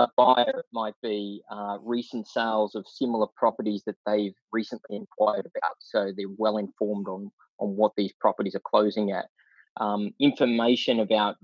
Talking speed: 150 wpm